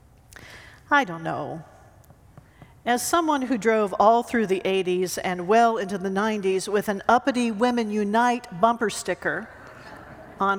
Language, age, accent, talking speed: English, 50-69, American, 135 wpm